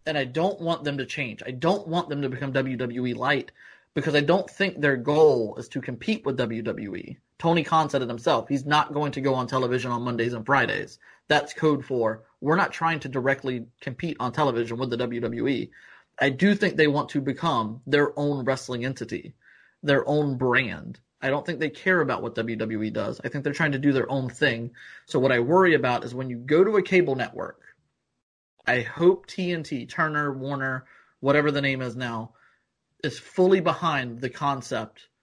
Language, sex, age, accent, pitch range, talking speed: English, male, 30-49, American, 125-155 Hz, 200 wpm